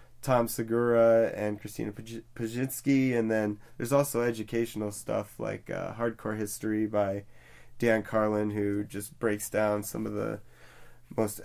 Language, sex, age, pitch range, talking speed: English, male, 20-39, 105-120 Hz, 135 wpm